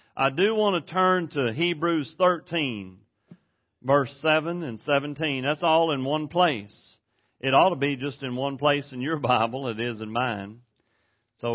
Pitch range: 115-165 Hz